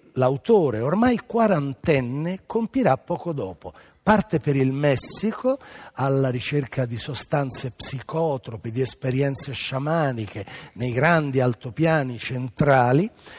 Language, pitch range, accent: Italian, 120-180 Hz, native